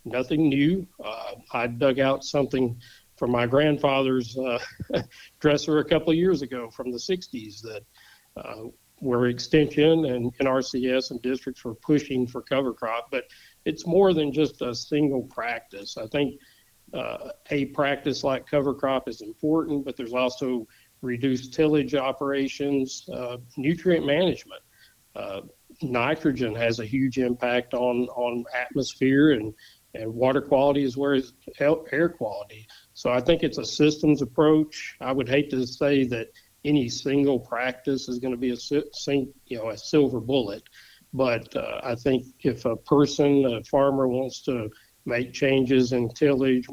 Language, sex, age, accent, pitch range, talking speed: English, male, 50-69, American, 125-145 Hz, 150 wpm